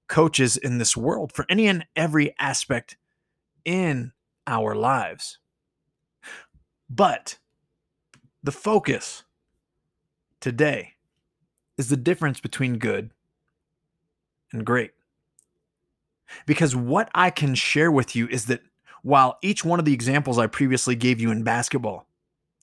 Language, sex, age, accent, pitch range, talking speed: English, male, 30-49, American, 120-155 Hz, 115 wpm